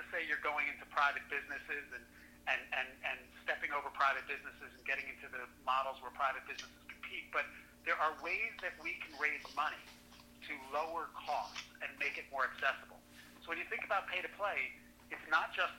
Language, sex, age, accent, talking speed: English, male, 40-59, American, 180 wpm